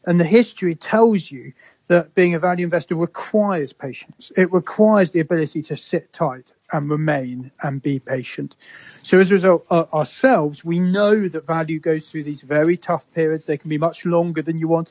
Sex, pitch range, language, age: male, 150-185 Hz, English, 40-59